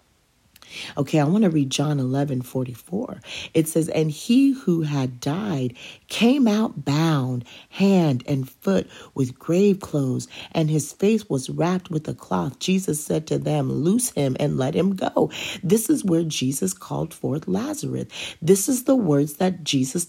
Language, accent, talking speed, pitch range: English, American, 170 wpm, 145-225 Hz